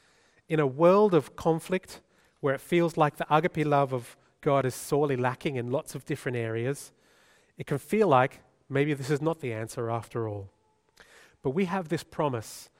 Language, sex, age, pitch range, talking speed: English, male, 30-49, 120-155 Hz, 185 wpm